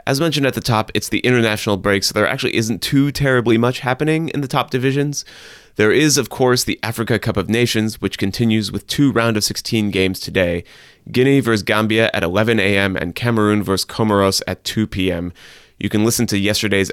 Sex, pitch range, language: male, 95-115 Hz, English